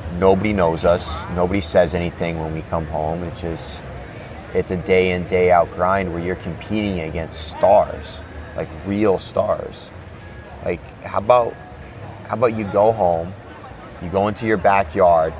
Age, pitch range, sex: 30-49, 85-100 Hz, male